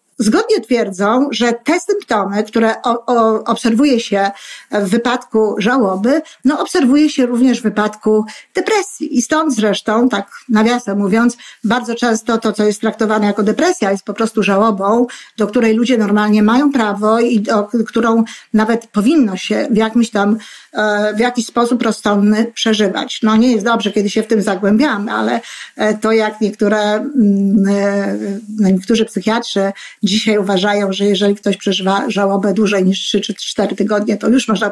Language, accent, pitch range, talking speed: Polish, native, 210-250 Hz, 155 wpm